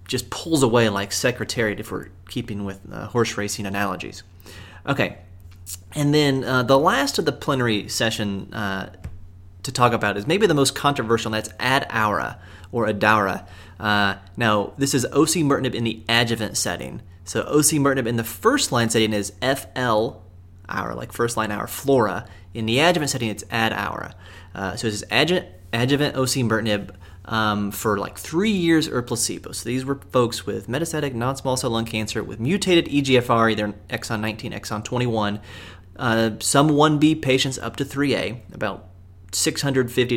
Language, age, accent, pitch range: English, 30-49, American, 100-130 Hz